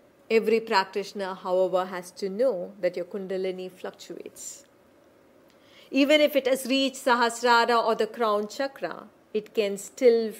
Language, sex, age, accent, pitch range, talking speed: English, female, 40-59, Indian, 205-280 Hz, 135 wpm